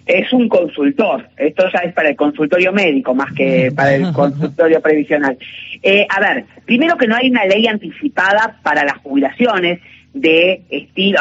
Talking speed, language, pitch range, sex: 165 wpm, Spanish, 165-235 Hz, female